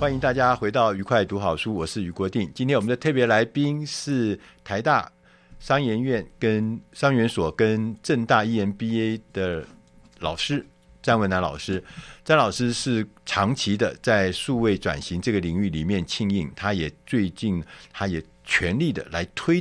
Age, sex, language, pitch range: 50-69, male, Chinese, 95-125 Hz